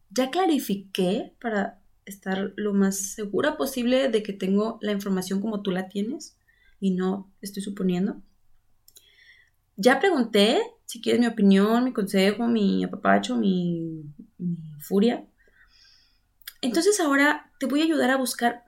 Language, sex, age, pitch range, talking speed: Spanish, female, 20-39, 195-260 Hz, 135 wpm